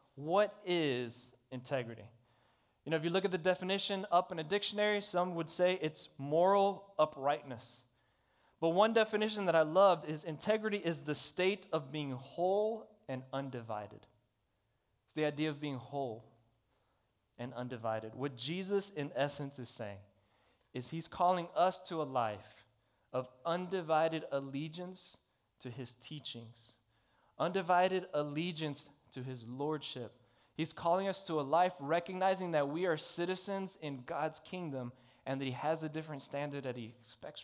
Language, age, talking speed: English, 30-49, 150 wpm